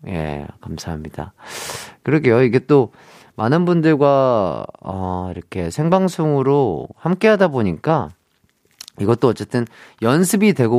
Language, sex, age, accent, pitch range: Korean, male, 30-49, native, 110-180 Hz